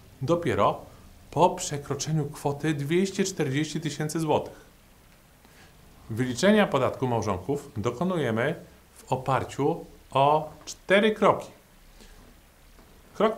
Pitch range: 110-165 Hz